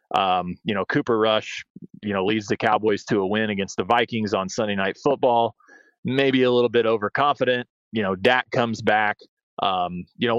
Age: 30-49